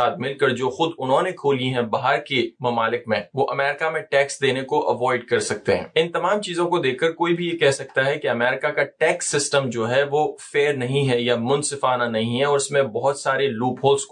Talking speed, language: 55 wpm, Urdu